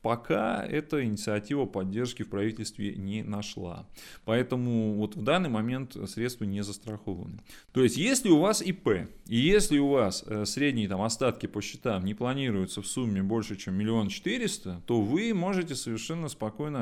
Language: Russian